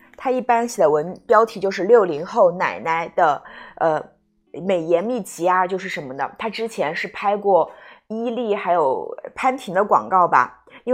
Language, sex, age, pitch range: Chinese, female, 20-39, 180-270 Hz